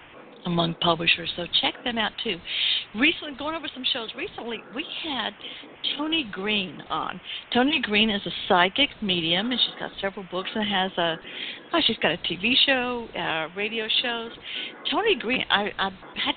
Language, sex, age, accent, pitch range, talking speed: English, female, 60-79, American, 185-240 Hz, 170 wpm